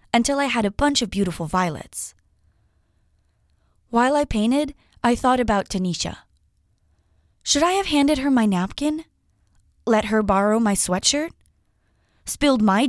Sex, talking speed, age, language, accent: female, 135 wpm, 20-39, French, American